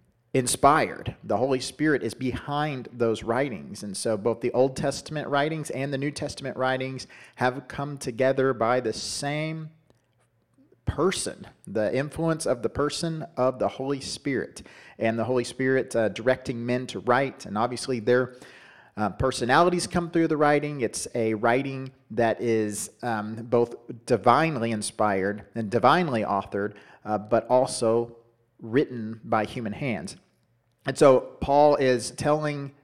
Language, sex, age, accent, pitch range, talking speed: English, male, 40-59, American, 115-135 Hz, 145 wpm